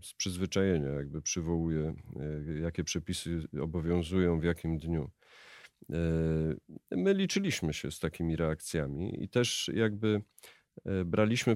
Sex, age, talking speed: male, 40-59, 105 wpm